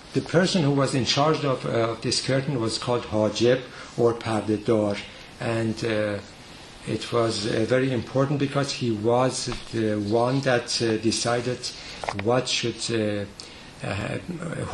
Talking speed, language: 145 wpm, English